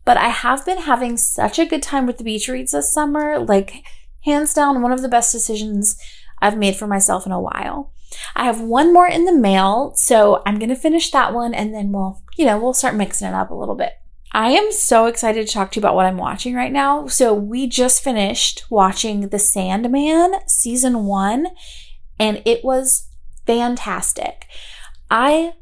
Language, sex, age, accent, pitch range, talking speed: English, female, 30-49, American, 210-280 Hz, 195 wpm